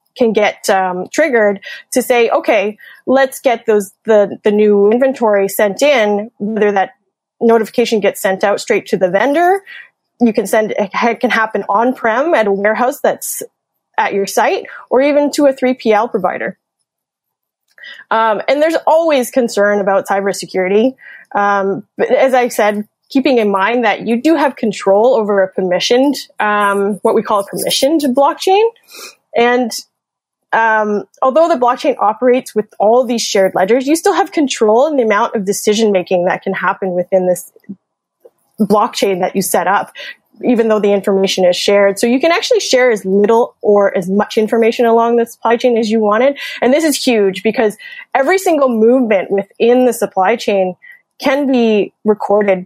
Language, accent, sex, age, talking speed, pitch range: English, American, female, 20-39, 170 wpm, 205-265 Hz